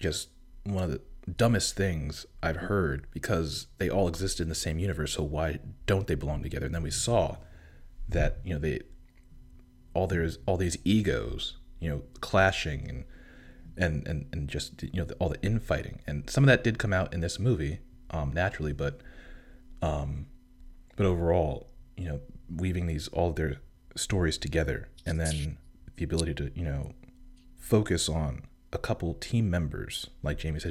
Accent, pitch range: American, 75-85 Hz